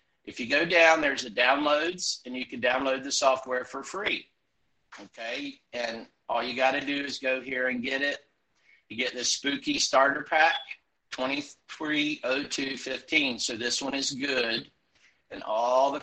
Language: English